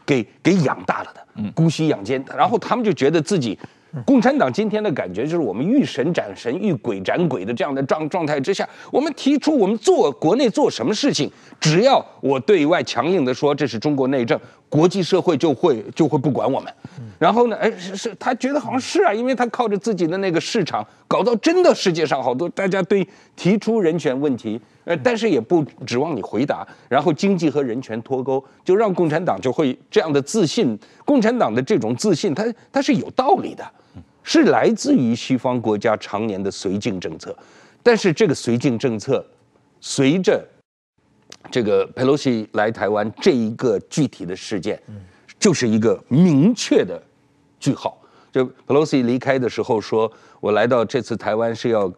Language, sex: Chinese, male